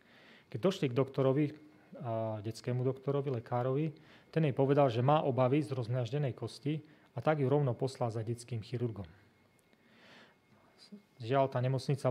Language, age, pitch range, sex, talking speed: Slovak, 30-49, 115-140 Hz, male, 140 wpm